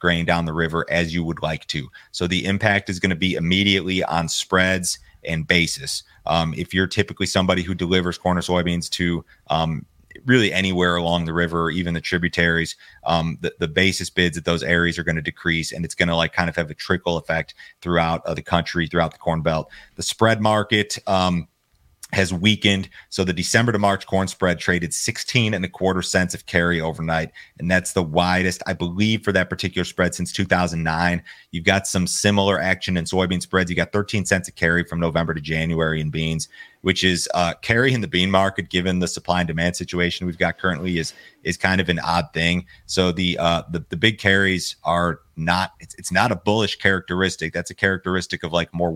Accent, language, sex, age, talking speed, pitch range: American, English, male, 30-49, 210 wpm, 85-95 Hz